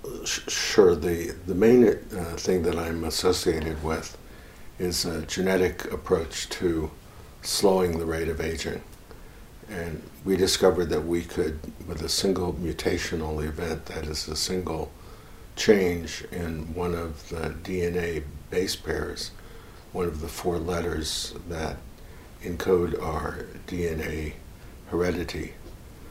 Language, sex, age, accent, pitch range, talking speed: English, male, 60-79, American, 80-90 Hz, 120 wpm